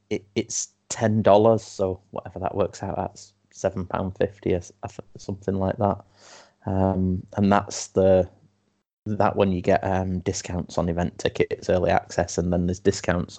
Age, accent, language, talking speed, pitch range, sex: 20-39, British, English, 160 wpm, 95-105 Hz, male